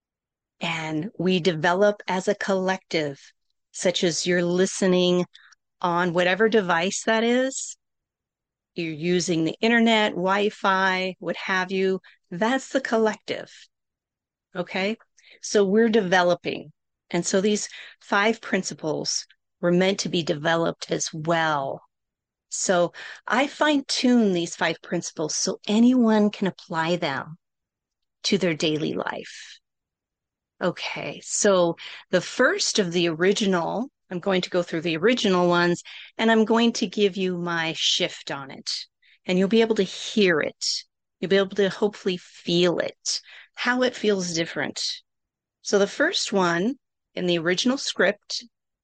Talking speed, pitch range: 135 wpm, 175-220 Hz